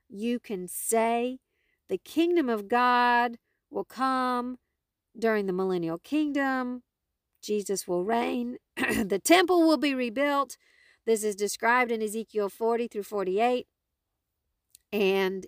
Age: 50-69